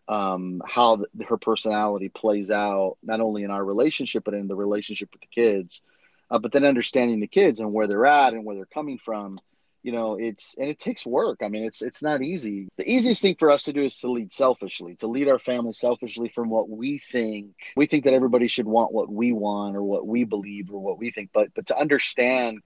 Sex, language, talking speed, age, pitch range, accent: male, English, 230 wpm, 30-49, 105-135 Hz, American